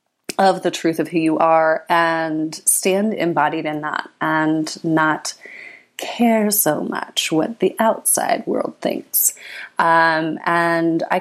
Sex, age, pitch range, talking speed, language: female, 30-49, 155-185 Hz, 135 wpm, English